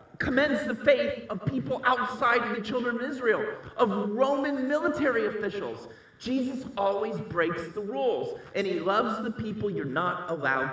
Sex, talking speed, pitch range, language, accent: male, 150 wpm, 165-240 Hz, English, American